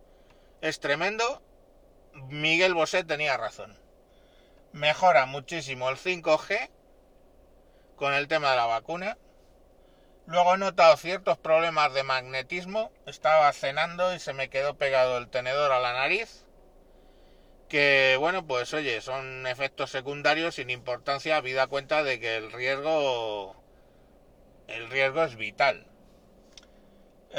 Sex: male